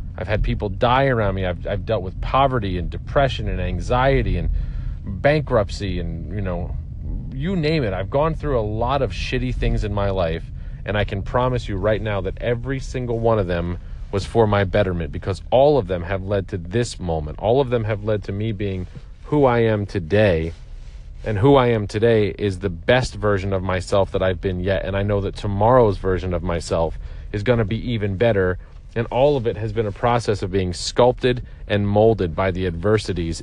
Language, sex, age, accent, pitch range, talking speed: English, male, 40-59, American, 90-120 Hz, 210 wpm